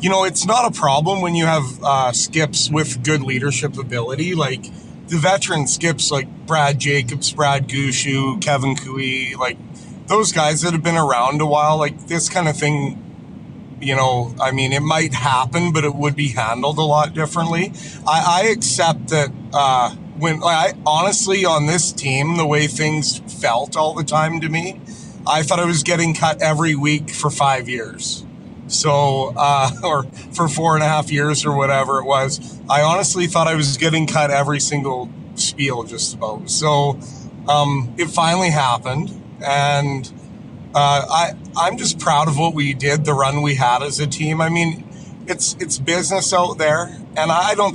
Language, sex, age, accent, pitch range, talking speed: English, male, 30-49, American, 140-165 Hz, 180 wpm